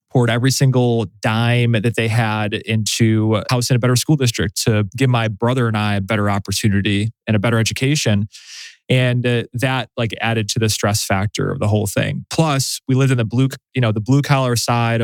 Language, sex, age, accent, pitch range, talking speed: English, male, 20-39, American, 110-125 Hz, 210 wpm